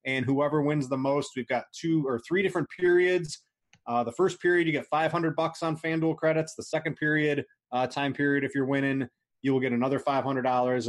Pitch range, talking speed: 120-155 Hz, 205 wpm